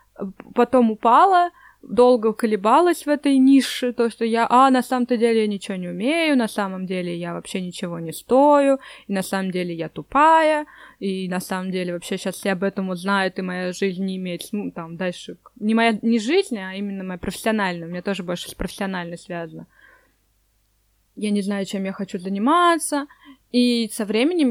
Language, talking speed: Russian, 185 wpm